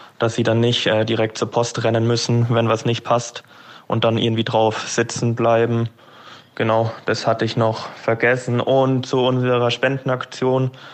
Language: German